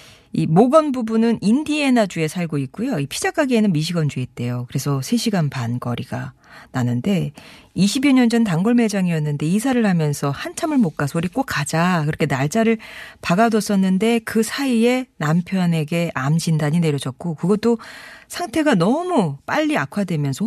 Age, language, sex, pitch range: 40-59, Korean, female, 145-220 Hz